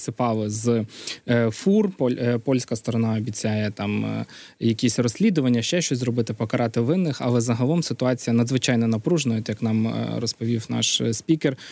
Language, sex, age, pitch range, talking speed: Ukrainian, male, 20-39, 115-130 Hz, 125 wpm